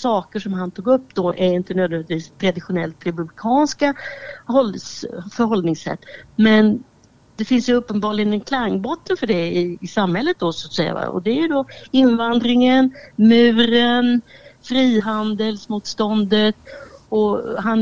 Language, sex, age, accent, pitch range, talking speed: Swedish, female, 60-79, native, 185-260 Hz, 120 wpm